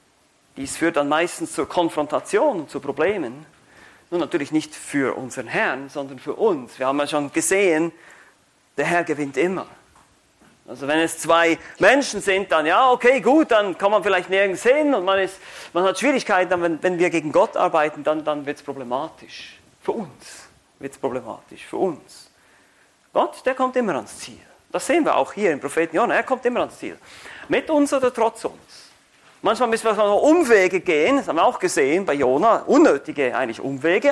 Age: 40-59